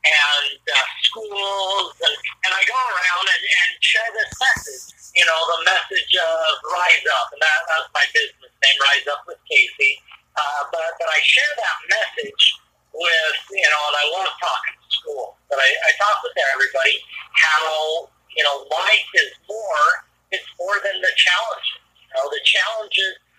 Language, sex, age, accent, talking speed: English, male, 50-69, American, 170 wpm